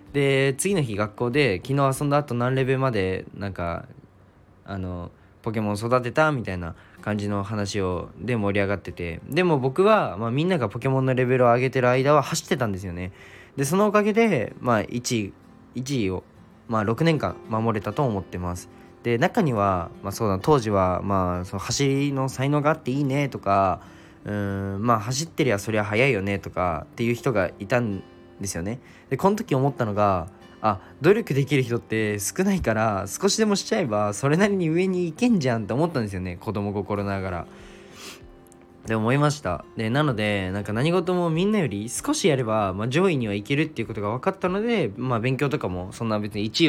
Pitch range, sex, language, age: 100-145 Hz, male, Japanese, 20-39